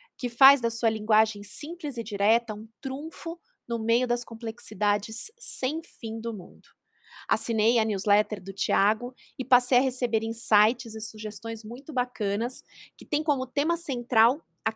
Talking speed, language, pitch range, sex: 155 wpm, Portuguese, 210-255 Hz, female